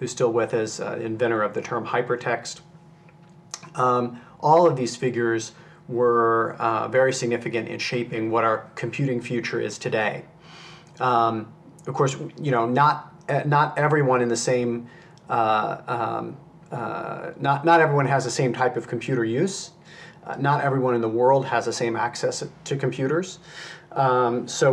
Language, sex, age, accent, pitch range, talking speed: English, male, 40-59, American, 120-160 Hz, 160 wpm